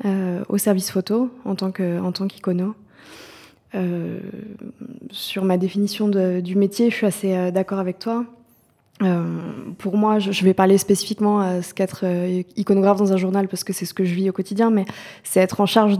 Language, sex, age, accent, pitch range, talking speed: French, female, 20-39, French, 180-205 Hz, 205 wpm